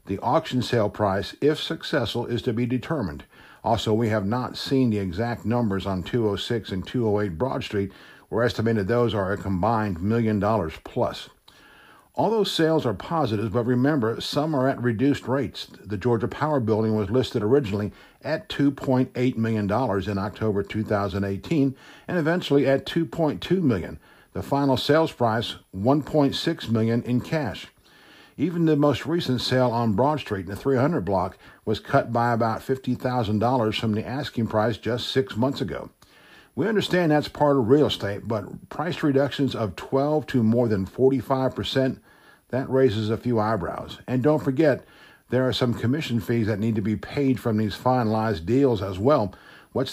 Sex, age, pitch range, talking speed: male, 60-79, 110-140 Hz, 180 wpm